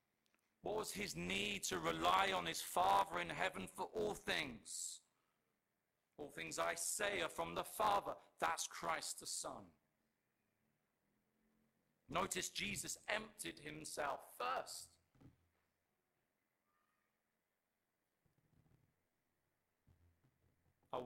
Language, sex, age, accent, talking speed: English, male, 50-69, British, 90 wpm